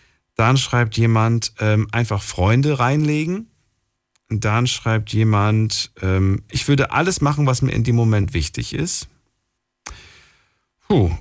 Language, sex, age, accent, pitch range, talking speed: German, male, 40-59, German, 95-130 Hz, 110 wpm